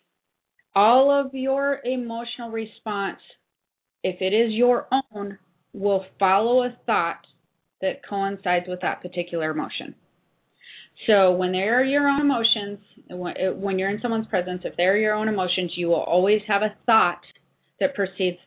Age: 30-49